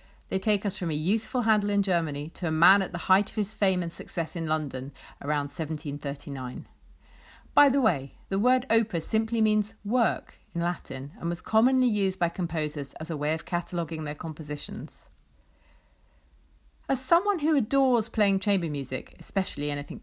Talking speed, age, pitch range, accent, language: 170 wpm, 40-59, 145-210 Hz, British, English